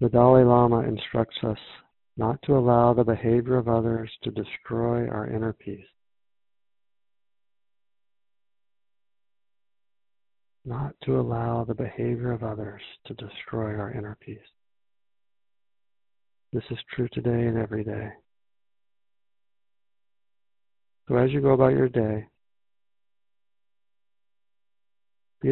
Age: 40-59